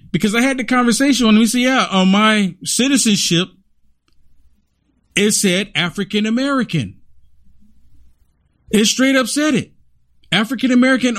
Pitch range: 150-230 Hz